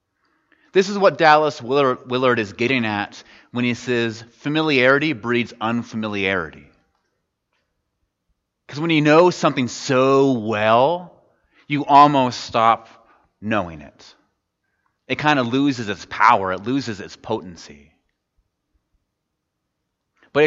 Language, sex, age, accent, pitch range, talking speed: English, male, 30-49, American, 105-140 Hz, 110 wpm